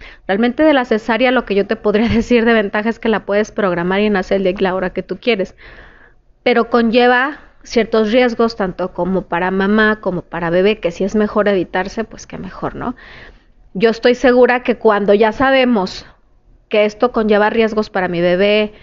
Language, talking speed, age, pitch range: Spanish, 190 wpm, 30-49, 205-245 Hz